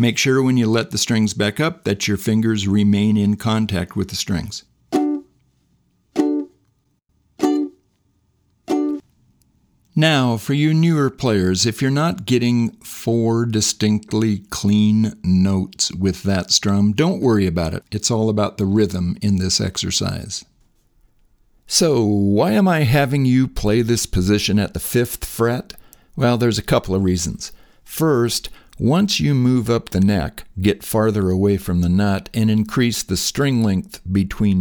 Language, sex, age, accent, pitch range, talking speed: English, male, 50-69, American, 95-120 Hz, 145 wpm